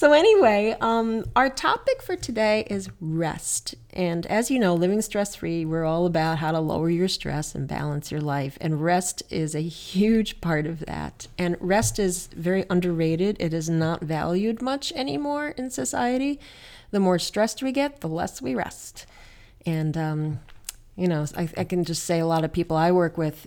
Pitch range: 155-190 Hz